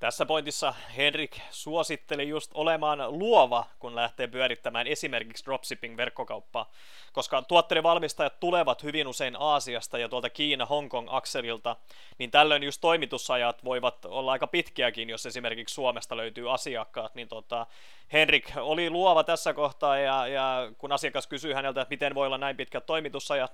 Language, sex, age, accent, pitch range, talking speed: Finnish, male, 30-49, native, 120-150 Hz, 140 wpm